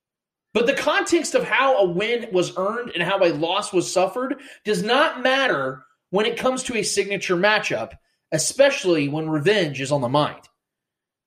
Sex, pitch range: male, 160-240 Hz